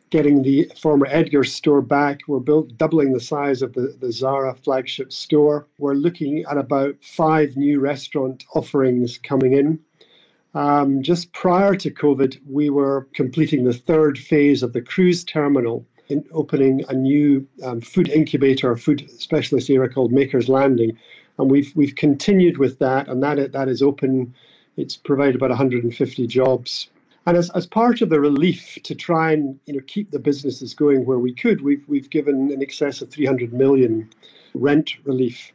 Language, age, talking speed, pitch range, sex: English, 50-69, 170 wpm, 135-160 Hz, male